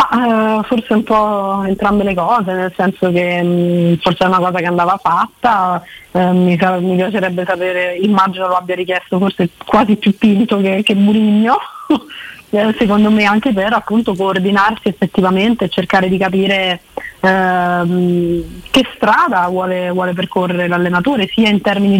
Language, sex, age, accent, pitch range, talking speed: Italian, female, 20-39, native, 180-205 Hz, 130 wpm